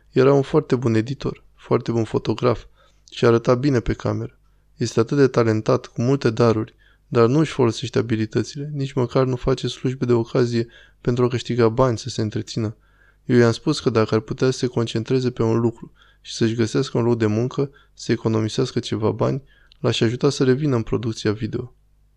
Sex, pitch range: male, 115-130 Hz